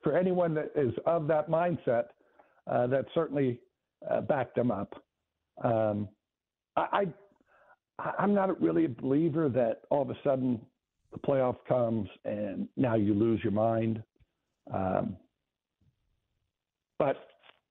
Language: English